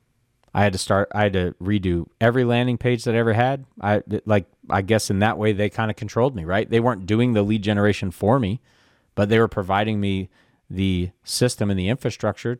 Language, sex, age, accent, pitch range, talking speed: English, male, 30-49, American, 95-120 Hz, 220 wpm